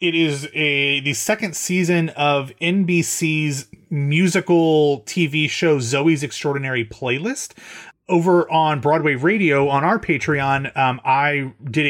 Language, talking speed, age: English, 120 wpm, 30-49